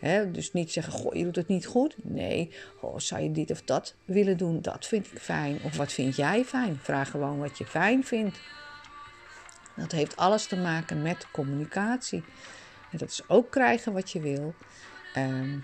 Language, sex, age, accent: Dutch, female, 50-69, Dutch